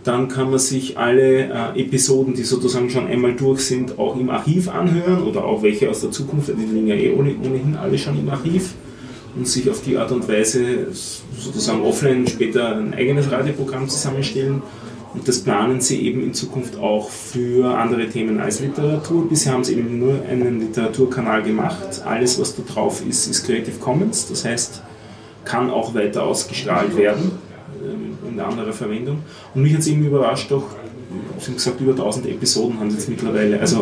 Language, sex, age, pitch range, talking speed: German, male, 30-49, 120-135 Hz, 180 wpm